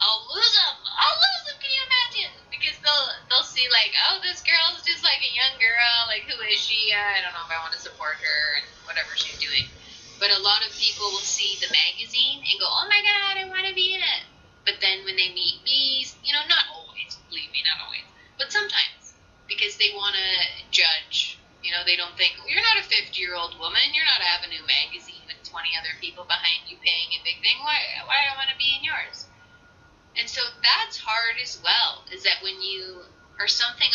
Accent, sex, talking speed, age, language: American, female, 220 wpm, 10-29, English